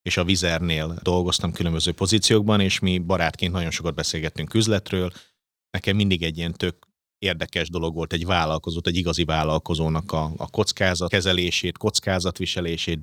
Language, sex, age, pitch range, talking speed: Hungarian, male, 30-49, 80-100 Hz, 145 wpm